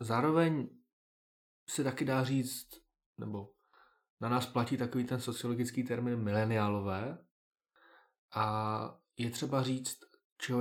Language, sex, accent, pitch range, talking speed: Czech, male, native, 110-130 Hz, 105 wpm